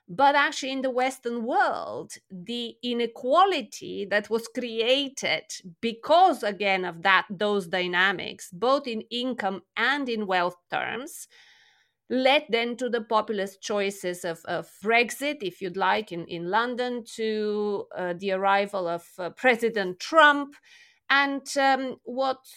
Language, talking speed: English, 135 wpm